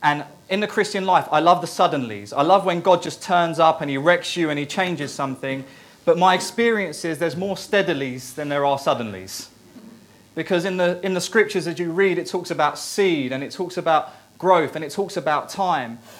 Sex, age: male, 30-49